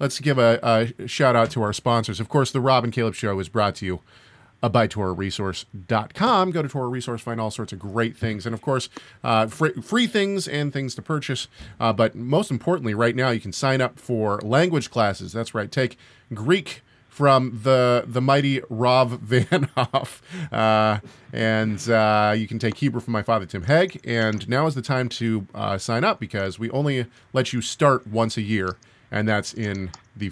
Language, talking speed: English, 195 wpm